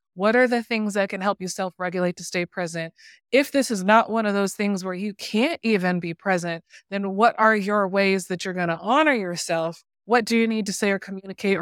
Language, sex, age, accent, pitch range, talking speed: English, female, 20-39, American, 175-230 Hz, 235 wpm